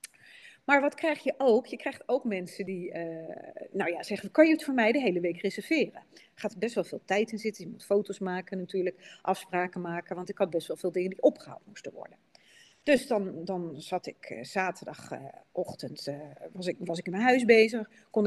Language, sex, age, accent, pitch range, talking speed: Dutch, female, 40-59, Dutch, 185-285 Hz, 215 wpm